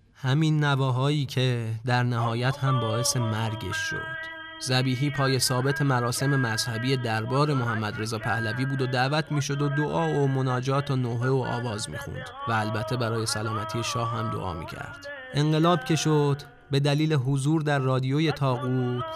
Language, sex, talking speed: Persian, male, 155 wpm